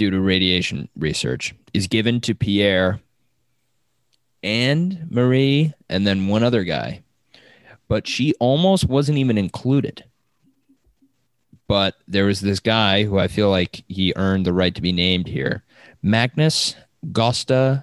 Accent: American